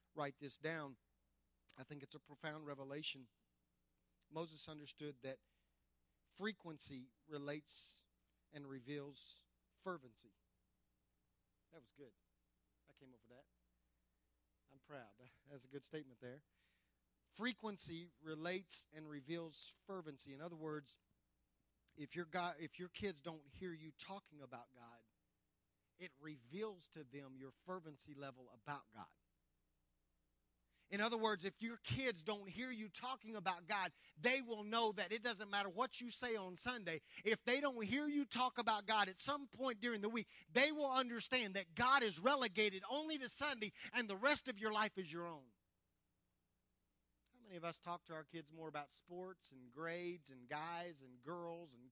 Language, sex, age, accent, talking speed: English, male, 40-59, American, 155 wpm